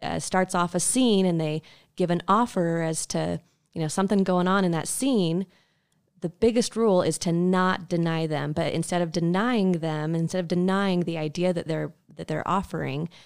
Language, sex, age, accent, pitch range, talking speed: English, female, 20-39, American, 165-190 Hz, 195 wpm